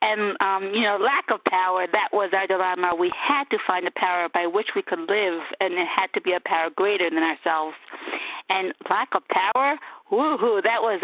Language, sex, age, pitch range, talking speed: English, female, 50-69, 195-310 Hz, 210 wpm